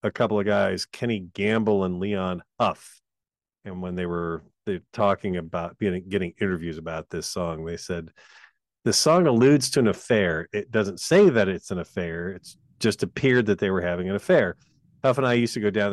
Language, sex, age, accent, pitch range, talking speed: English, male, 40-59, American, 95-120 Hz, 195 wpm